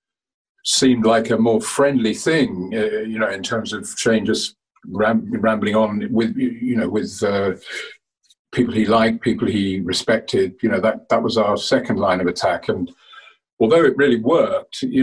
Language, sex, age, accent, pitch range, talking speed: English, male, 50-69, British, 110-170 Hz, 170 wpm